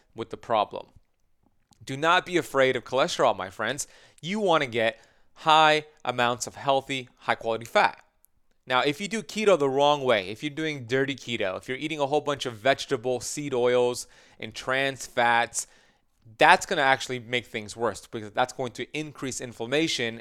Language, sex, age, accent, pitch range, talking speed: English, male, 30-49, American, 115-150 Hz, 180 wpm